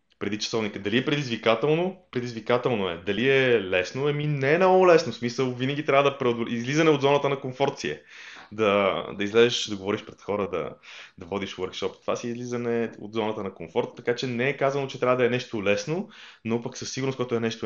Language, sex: Bulgarian, male